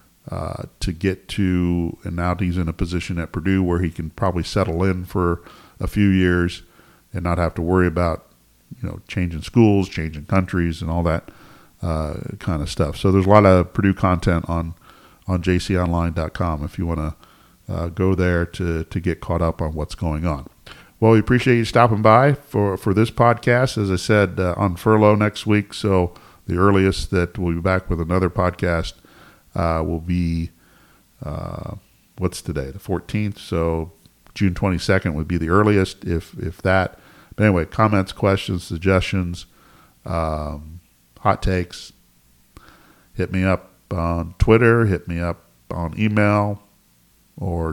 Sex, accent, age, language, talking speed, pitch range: male, American, 50-69, English, 165 wpm, 85-100 Hz